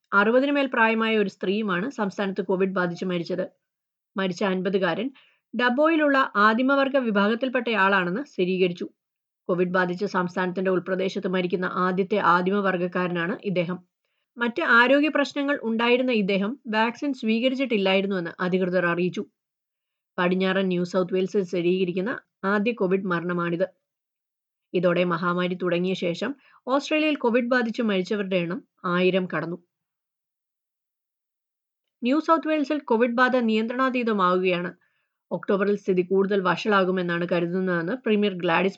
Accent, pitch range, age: native, 185-250 Hz, 20-39